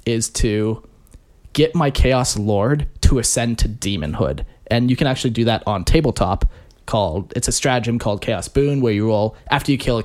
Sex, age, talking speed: male, 20-39, 190 wpm